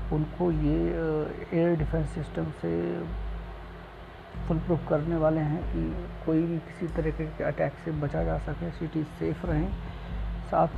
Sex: male